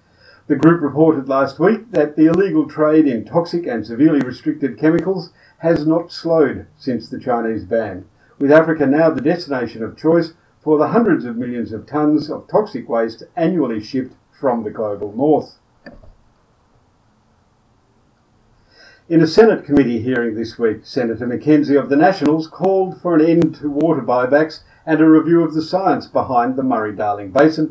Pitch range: 120-160 Hz